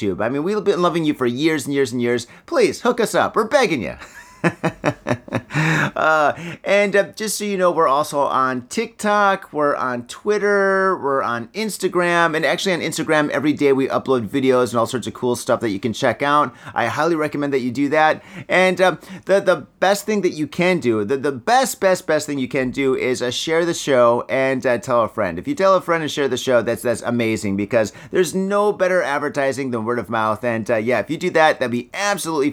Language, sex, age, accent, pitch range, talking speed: English, male, 30-49, American, 130-180 Hz, 225 wpm